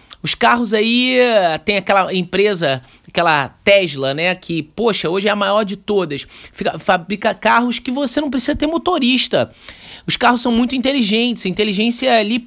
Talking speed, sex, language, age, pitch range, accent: 155 wpm, male, Portuguese, 30-49, 160-225 Hz, Brazilian